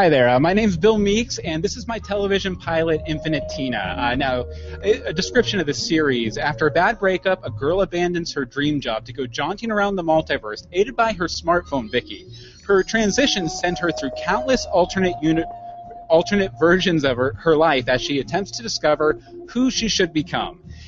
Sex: male